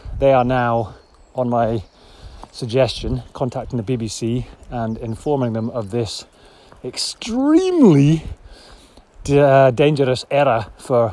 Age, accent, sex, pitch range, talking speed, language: 30-49, British, male, 110-135 Hz, 95 wpm, English